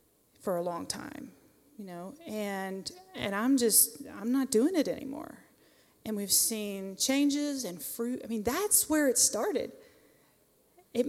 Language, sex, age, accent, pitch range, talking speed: English, female, 30-49, American, 210-285 Hz, 150 wpm